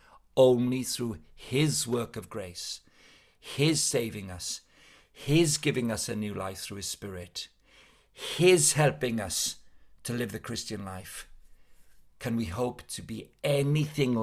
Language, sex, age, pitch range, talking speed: English, male, 50-69, 100-130 Hz, 135 wpm